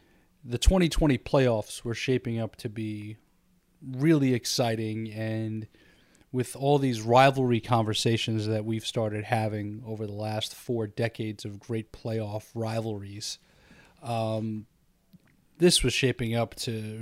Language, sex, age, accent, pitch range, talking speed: English, male, 30-49, American, 110-130 Hz, 125 wpm